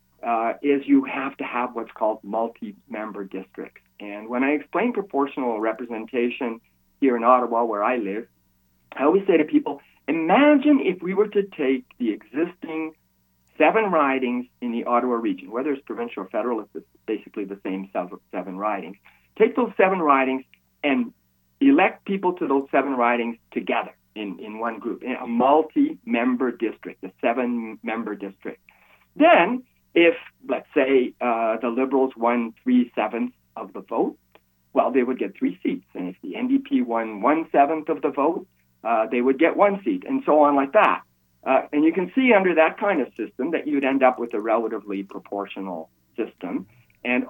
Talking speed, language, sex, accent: 165 wpm, English, male, American